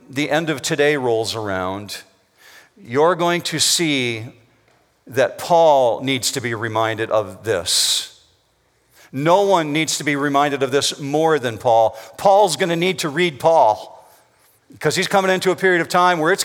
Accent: American